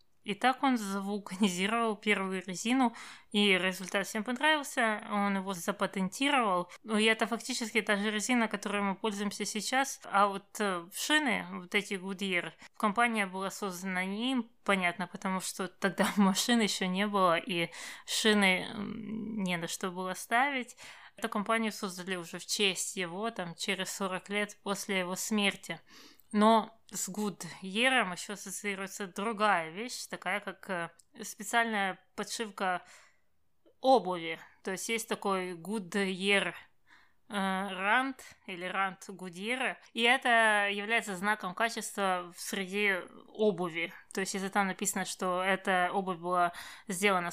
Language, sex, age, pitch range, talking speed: Russian, female, 20-39, 190-220 Hz, 130 wpm